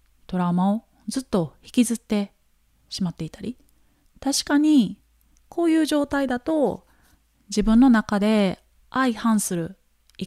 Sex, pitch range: female, 180-260 Hz